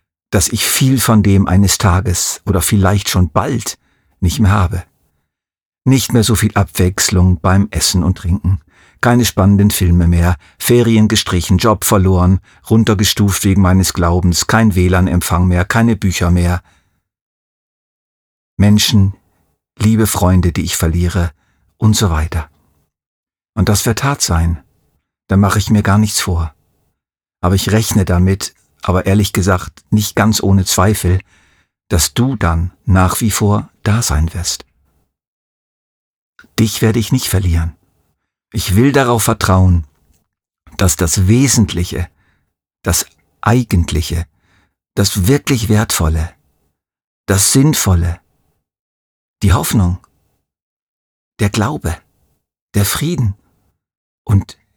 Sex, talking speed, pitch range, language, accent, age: male, 120 wpm, 90-110 Hz, German, German, 50-69